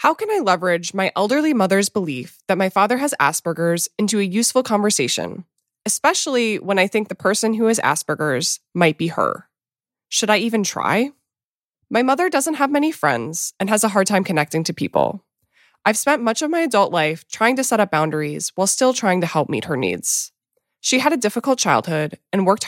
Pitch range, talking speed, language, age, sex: 170-235 Hz, 195 wpm, English, 20-39, female